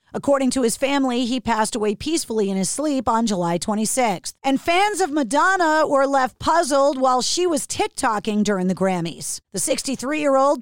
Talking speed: 170 wpm